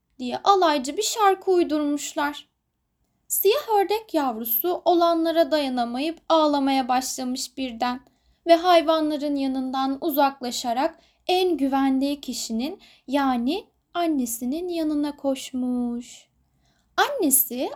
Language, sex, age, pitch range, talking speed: Turkish, female, 10-29, 255-335 Hz, 85 wpm